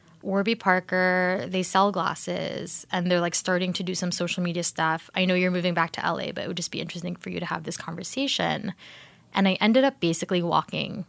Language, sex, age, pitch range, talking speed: English, female, 20-39, 175-200 Hz, 215 wpm